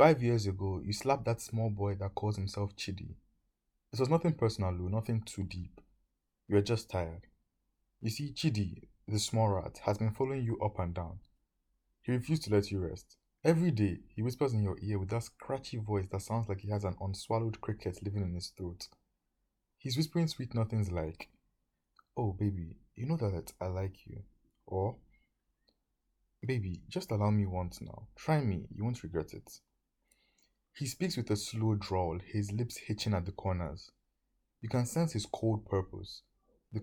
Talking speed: 180 wpm